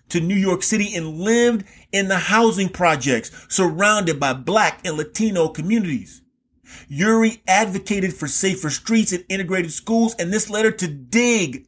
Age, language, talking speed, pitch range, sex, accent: 40-59, English, 155 wpm, 145-210 Hz, male, American